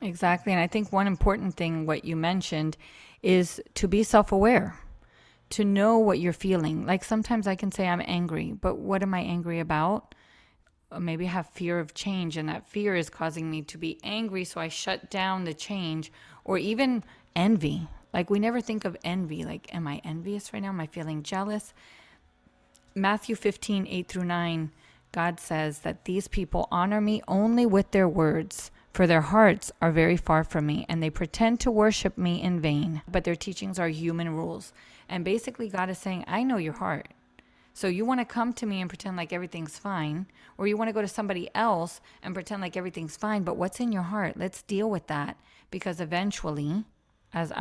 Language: English